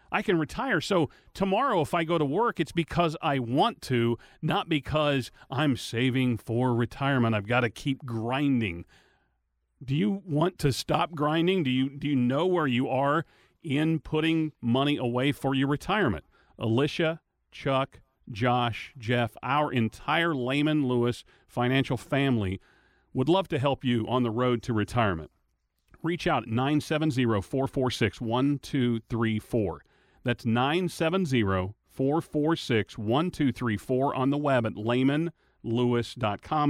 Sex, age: male, 40-59